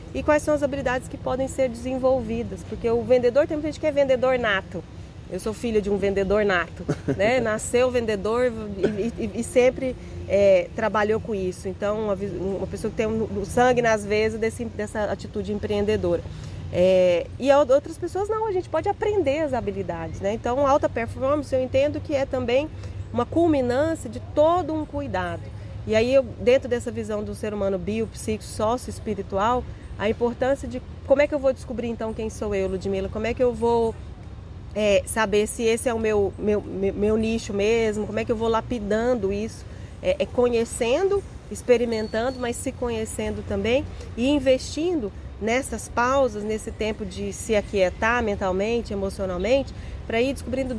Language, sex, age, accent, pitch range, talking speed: Portuguese, female, 30-49, Brazilian, 205-255 Hz, 175 wpm